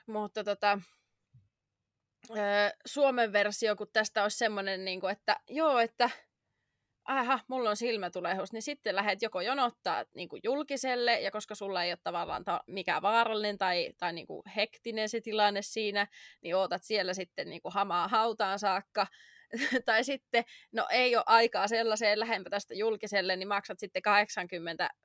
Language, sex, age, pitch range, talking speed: Finnish, female, 20-39, 185-220 Hz, 150 wpm